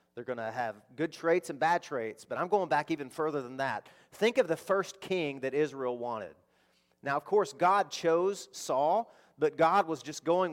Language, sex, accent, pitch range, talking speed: English, male, American, 140-185 Hz, 205 wpm